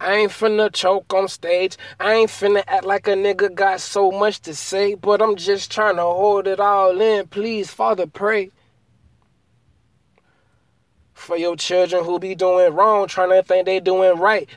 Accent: American